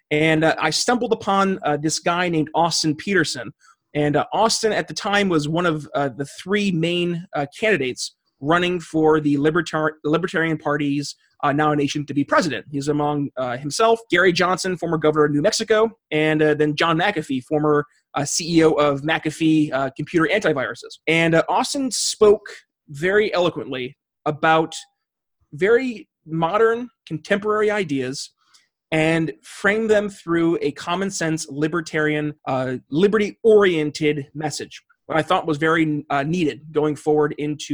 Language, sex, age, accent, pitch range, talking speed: English, male, 30-49, American, 150-180 Hz, 150 wpm